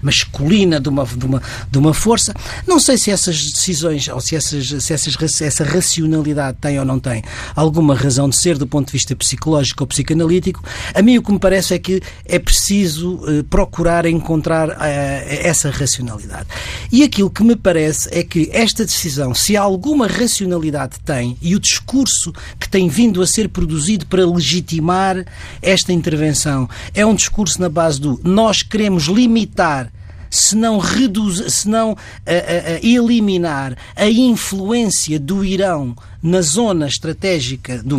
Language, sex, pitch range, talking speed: Portuguese, male, 140-205 Hz, 145 wpm